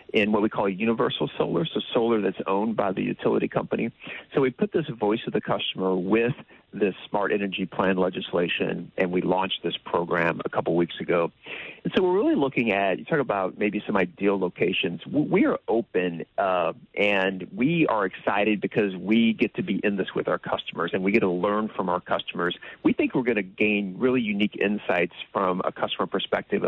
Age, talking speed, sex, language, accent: 40-59, 200 wpm, male, English, American